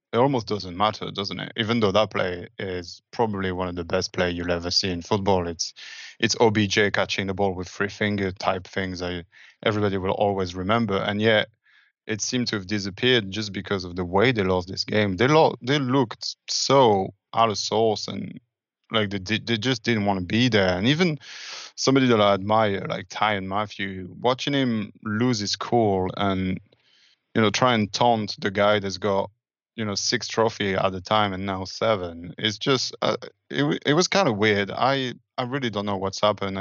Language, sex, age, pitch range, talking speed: English, male, 20-39, 95-115 Hz, 205 wpm